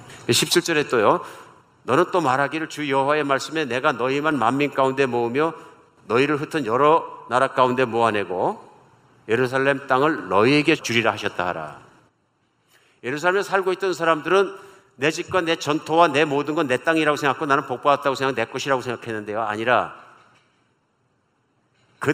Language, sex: Korean, male